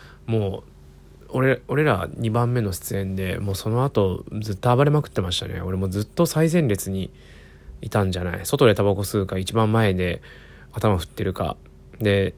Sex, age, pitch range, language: male, 20-39, 95-120 Hz, Japanese